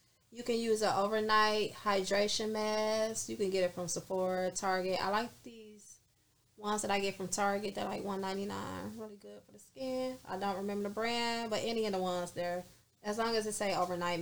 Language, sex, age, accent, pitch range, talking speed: English, female, 20-39, American, 180-220 Hz, 205 wpm